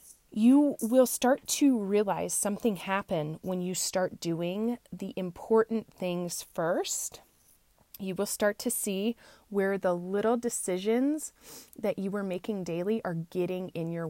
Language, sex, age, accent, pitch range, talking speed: English, female, 20-39, American, 180-220 Hz, 140 wpm